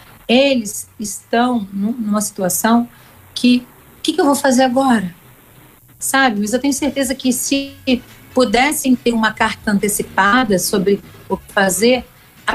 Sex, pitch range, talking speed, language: female, 185-240 Hz, 130 wpm, Portuguese